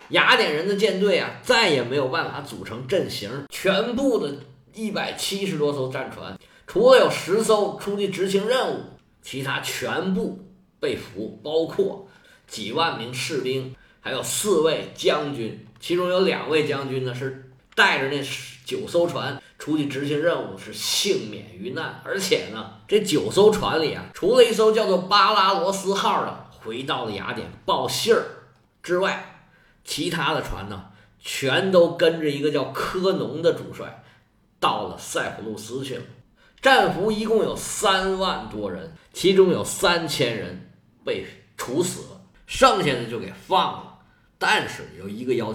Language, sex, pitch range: Chinese, male, 140-220 Hz